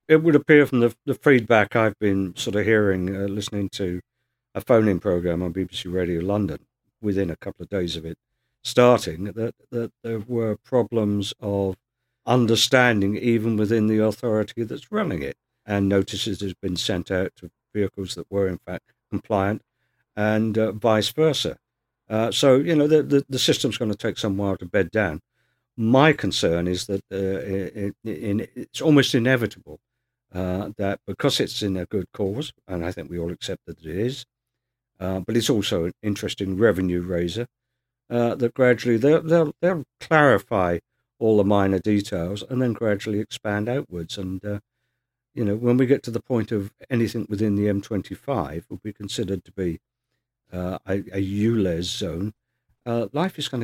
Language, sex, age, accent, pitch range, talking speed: English, male, 50-69, British, 95-120 Hz, 175 wpm